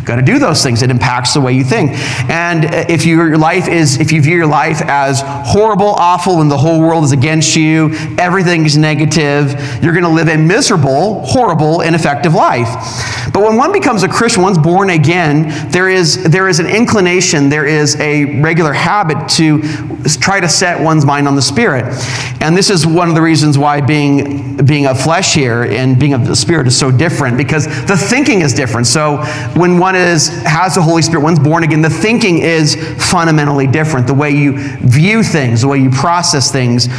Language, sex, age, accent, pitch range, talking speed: English, male, 40-59, American, 140-170 Hz, 200 wpm